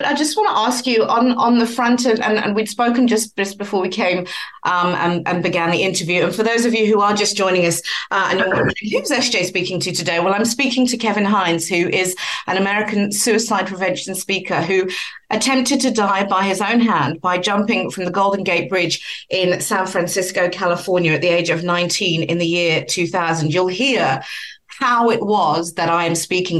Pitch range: 175-225 Hz